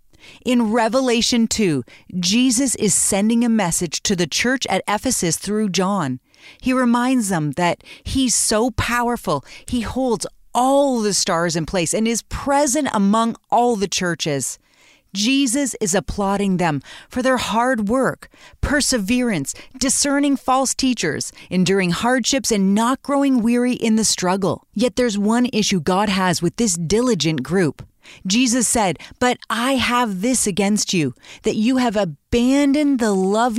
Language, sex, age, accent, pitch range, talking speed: English, female, 30-49, American, 190-255 Hz, 145 wpm